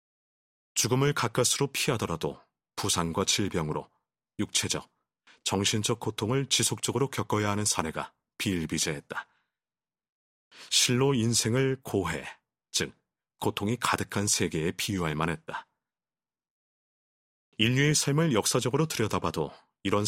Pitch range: 95-125 Hz